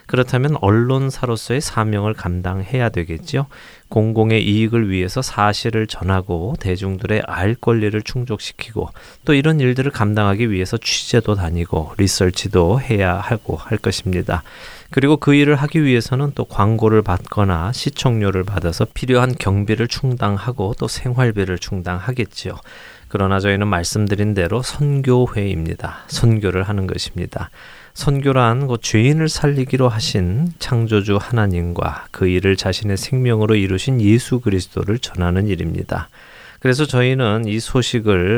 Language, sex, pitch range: Korean, male, 95-125 Hz